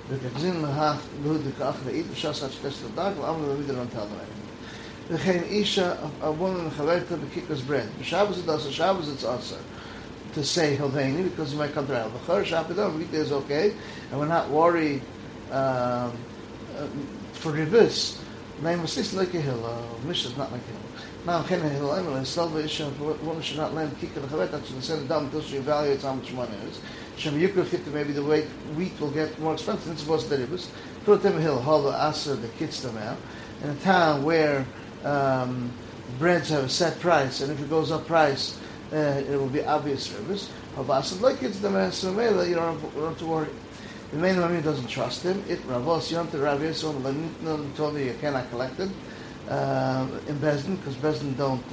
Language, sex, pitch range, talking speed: English, male, 140-170 Hz, 150 wpm